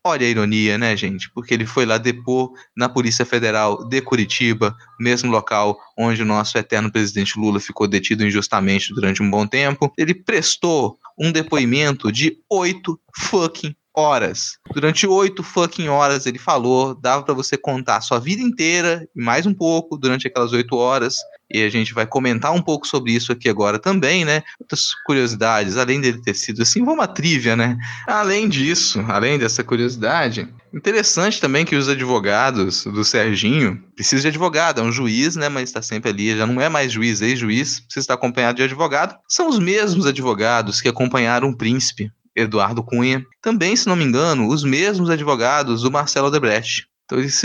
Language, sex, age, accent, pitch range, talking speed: Portuguese, male, 20-39, Brazilian, 115-155 Hz, 180 wpm